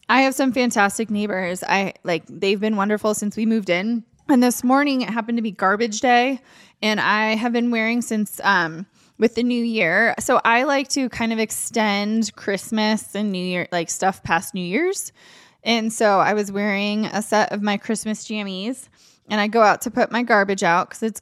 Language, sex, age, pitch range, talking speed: English, female, 20-39, 195-250 Hz, 205 wpm